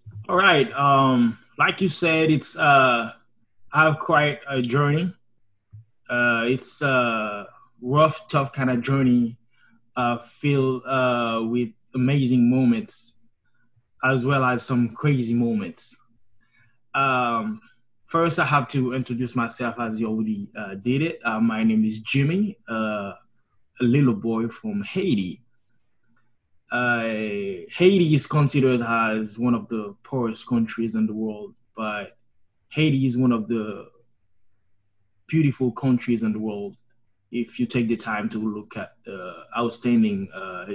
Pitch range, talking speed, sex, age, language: 110-135 Hz, 135 wpm, male, 20-39, English